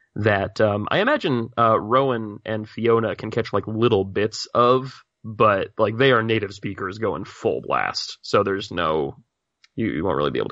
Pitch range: 100-115 Hz